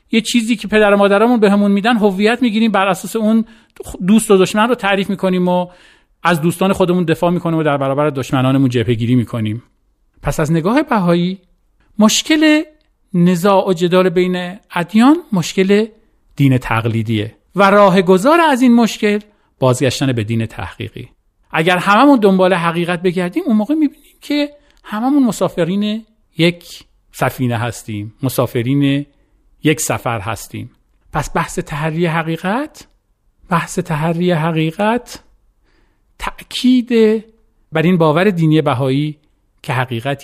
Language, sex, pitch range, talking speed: Persian, male, 125-200 Hz, 130 wpm